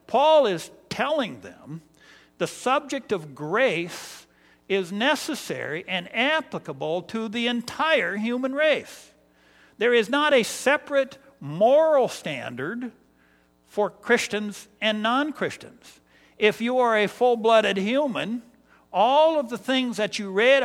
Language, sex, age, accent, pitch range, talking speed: English, male, 60-79, American, 170-245 Hz, 120 wpm